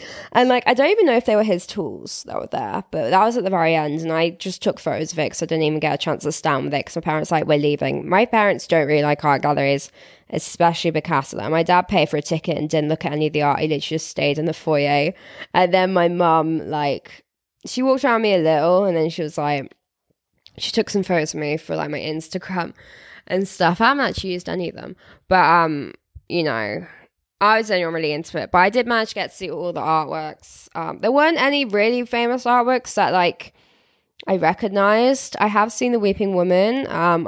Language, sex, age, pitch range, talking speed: English, female, 10-29, 160-200 Hz, 245 wpm